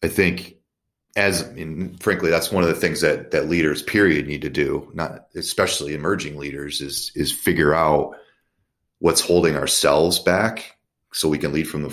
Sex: male